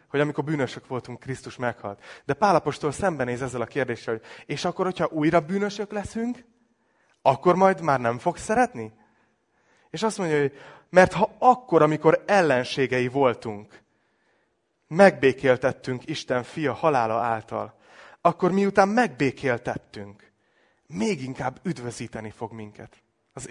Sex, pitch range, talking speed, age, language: male, 120-175 Hz, 125 wpm, 30-49, Hungarian